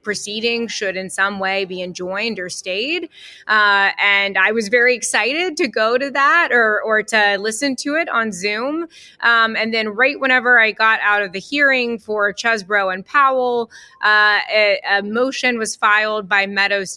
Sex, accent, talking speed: female, American, 175 wpm